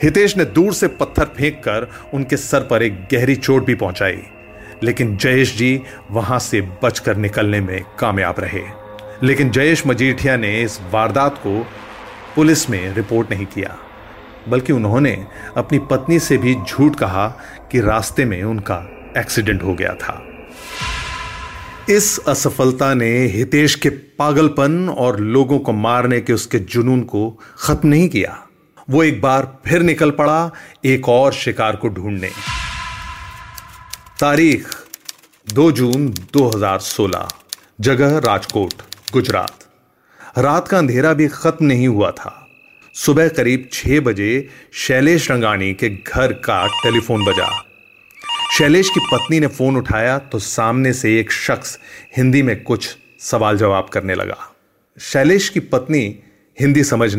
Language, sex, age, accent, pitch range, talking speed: Hindi, male, 30-49, native, 105-145 Hz, 135 wpm